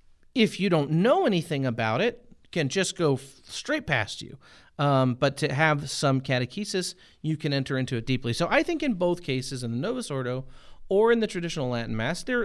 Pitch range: 125-170 Hz